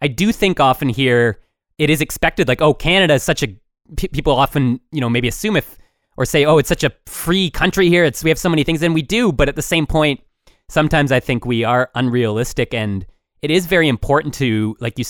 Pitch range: 110-145 Hz